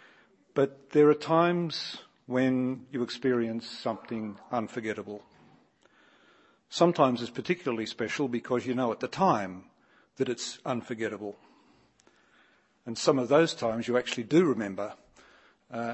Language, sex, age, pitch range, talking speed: English, male, 50-69, 115-140 Hz, 120 wpm